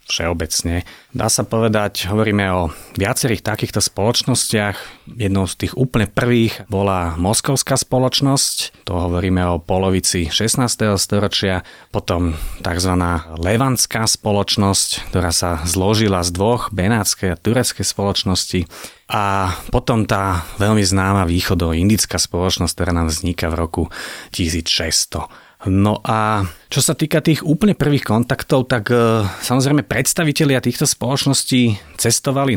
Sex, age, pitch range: male, 30-49, 90-120 Hz